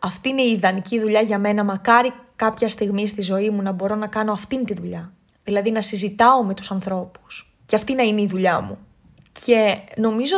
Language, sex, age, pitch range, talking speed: Greek, female, 20-39, 200-230 Hz, 200 wpm